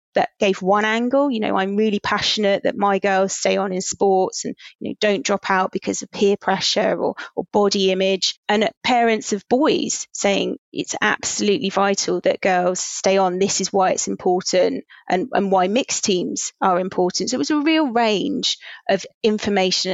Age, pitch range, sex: 30-49, 190-225 Hz, female